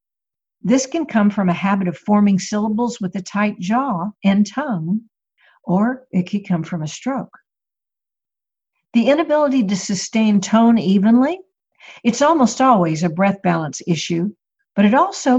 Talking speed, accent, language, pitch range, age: 150 wpm, American, English, 180-230 Hz, 60-79